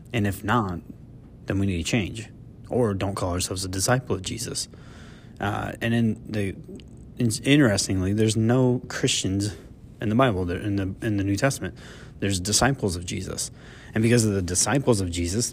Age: 20-39